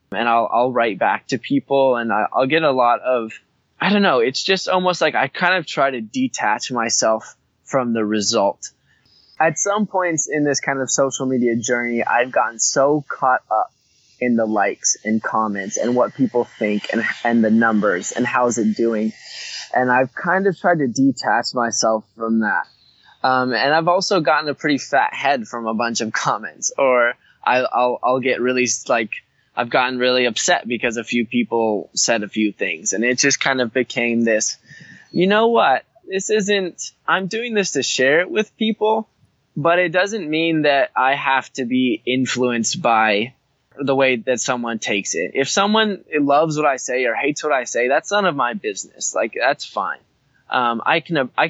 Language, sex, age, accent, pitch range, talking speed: English, male, 20-39, American, 115-160 Hz, 195 wpm